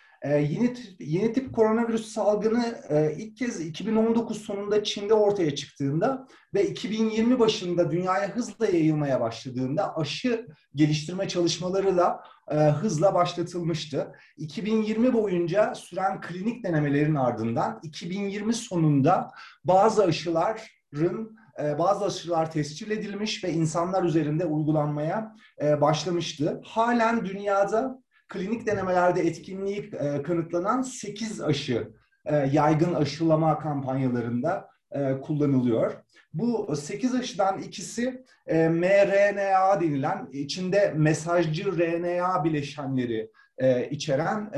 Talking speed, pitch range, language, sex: 100 wpm, 150-210 Hz, Turkish, male